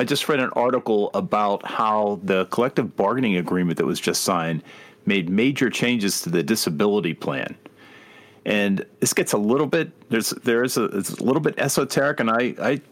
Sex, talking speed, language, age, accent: male, 185 wpm, English, 40-59, American